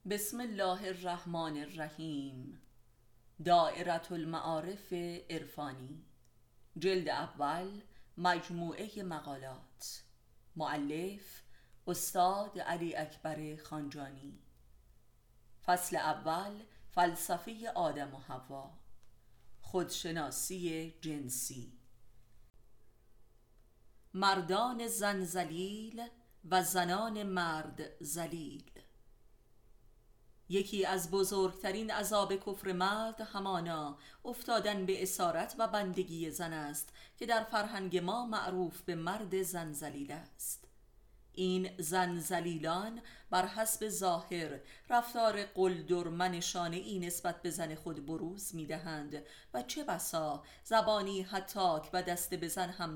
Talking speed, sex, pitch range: 90 wpm, female, 155-190 Hz